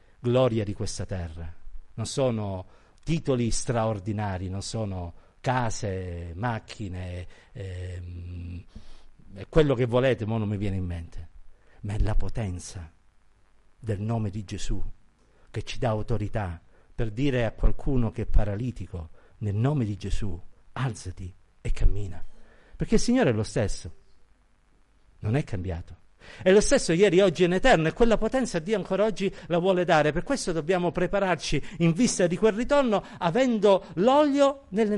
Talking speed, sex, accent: 150 wpm, male, native